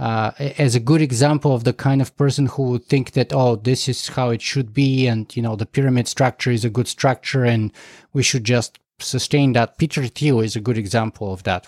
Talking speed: 230 wpm